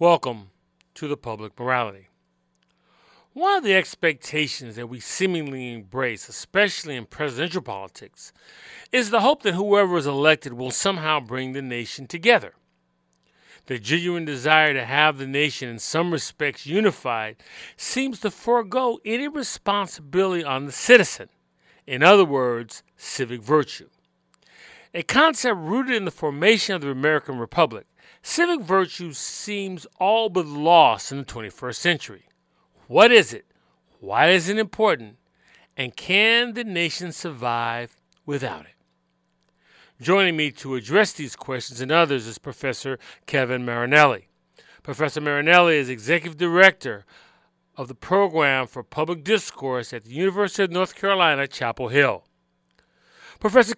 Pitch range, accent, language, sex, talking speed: 125-195 Hz, American, English, male, 135 wpm